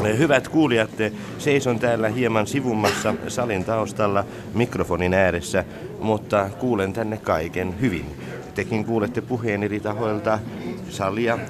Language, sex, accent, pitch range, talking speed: Finnish, male, native, 95-115 Hz, 110 wpm